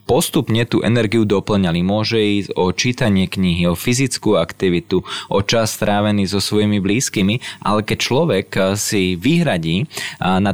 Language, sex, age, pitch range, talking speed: Slovak, male, 20-39, 100-125 Hz, 135 wpm